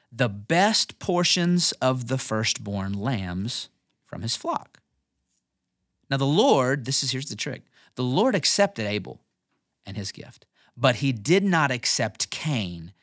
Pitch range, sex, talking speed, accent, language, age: 105-145 Hz, male, 145 wpm, American, English, 30-49